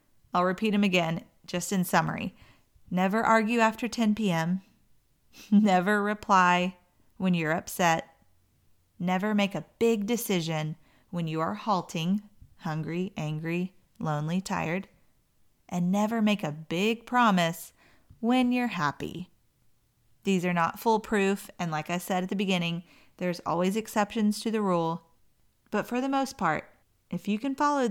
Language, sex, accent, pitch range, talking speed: English, female, American, 170-205 Hz, 140 wpm